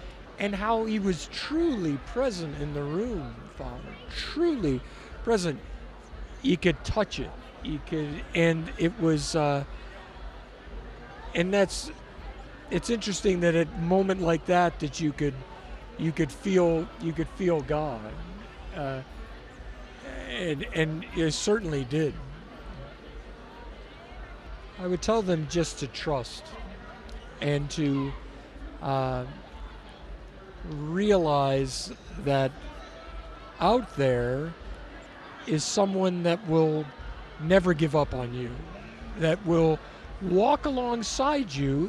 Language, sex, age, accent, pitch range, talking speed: English, male, 50-69, American, 150-205 Hz, 110 wpm